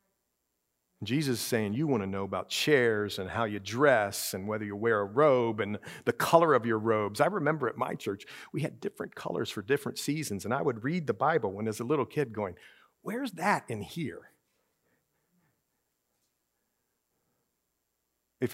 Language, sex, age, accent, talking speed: English, male, 50-69, American, 175 wpm